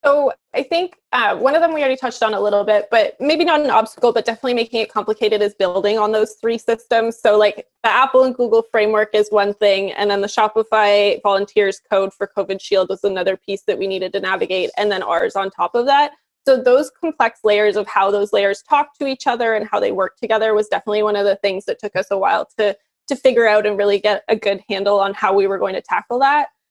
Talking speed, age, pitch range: 245 wpm, 20-39, 210-270 Hz